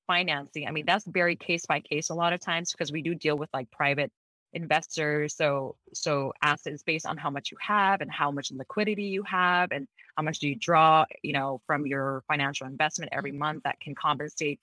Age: 20-39